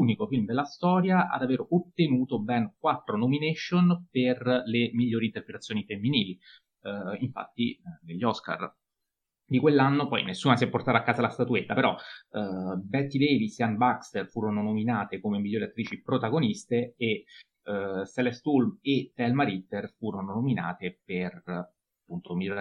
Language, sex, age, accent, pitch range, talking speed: Italian, male, 30-49, native, 100-140 Hz, 145 wpm